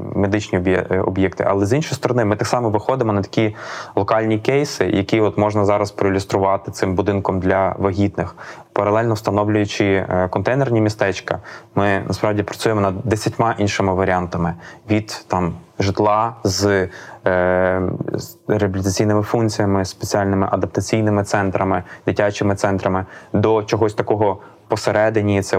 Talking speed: 120 wpm